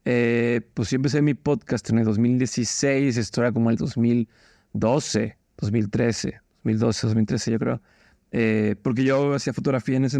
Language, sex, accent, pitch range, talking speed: Spanish, male, Mexican, 115-145 Hz, 155 wpm